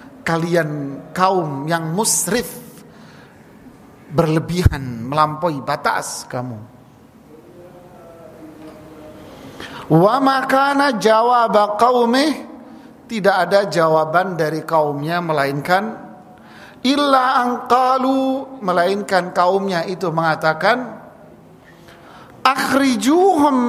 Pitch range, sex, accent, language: 170-245 Hz, male, native, Indonesian